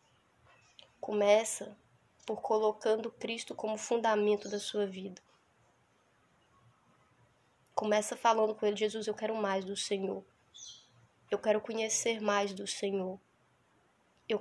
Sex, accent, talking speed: female, Brazilian, 110 wpm